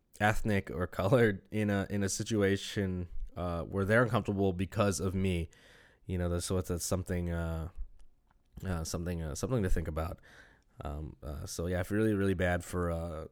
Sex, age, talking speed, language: male, 20-39, 180 wpm, English